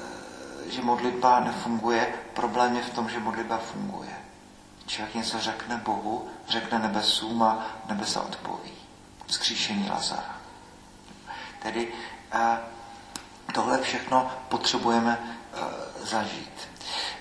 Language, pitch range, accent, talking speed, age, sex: Czech, 115-135 Hz, native, 90 wpm, 50-69, male